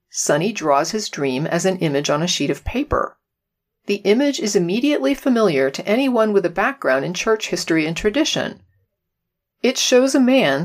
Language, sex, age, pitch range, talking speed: English, female, 40-59, 160-225 Hz, 175 wpm